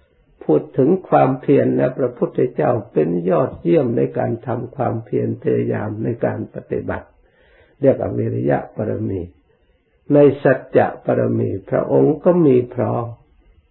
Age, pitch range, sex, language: 60-79, 75-130 Hz, male, Thai